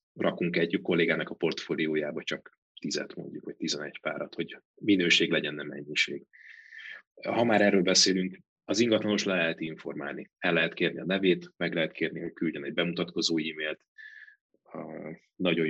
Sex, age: male, 30-49